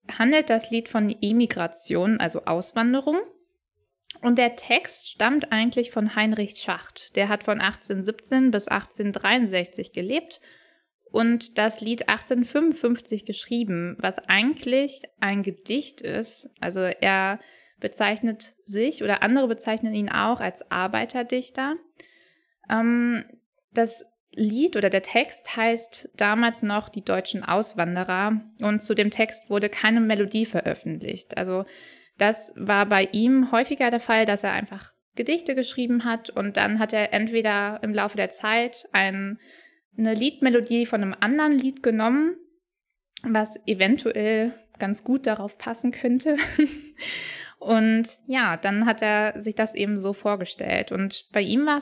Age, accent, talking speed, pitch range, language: 10-29, German, 130 wpm, 205-250 Hz, German